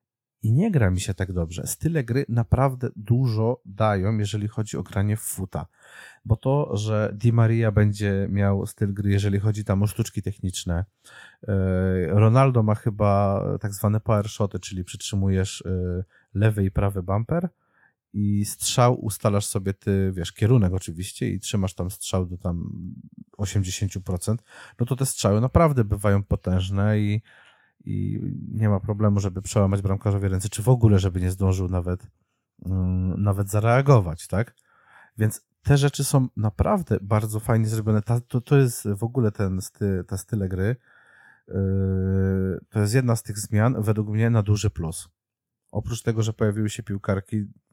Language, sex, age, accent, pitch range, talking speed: Polish, male, 30-49, native, 95-115 Hz, 155 wpm